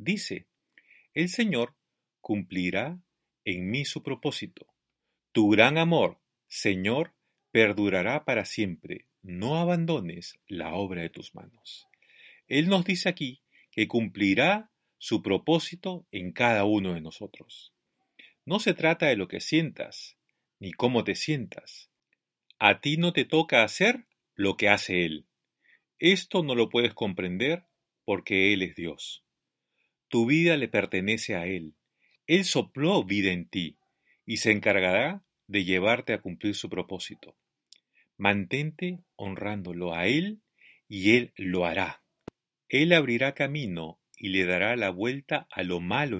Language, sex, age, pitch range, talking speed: Spanish, male, 40-59, 95-160 Hz, 135 wpm